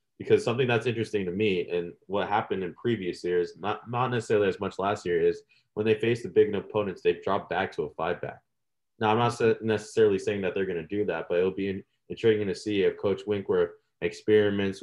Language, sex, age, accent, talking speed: English, male, 20-39, American, 215 wpm